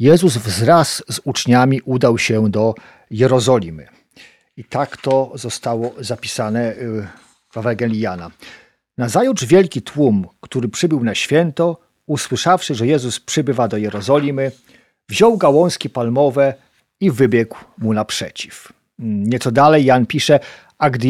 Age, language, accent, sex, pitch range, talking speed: 50-69, Polish, native, male, 120-165 Hz, 120 wpm